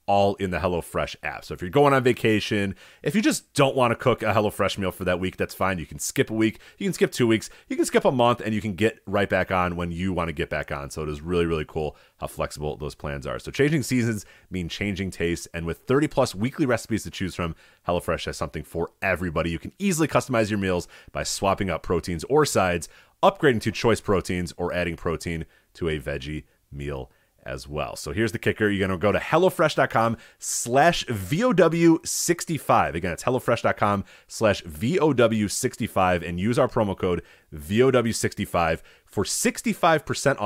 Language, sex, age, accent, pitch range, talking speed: English, male, 30-49, American, 85-120 Hz, 200 wpm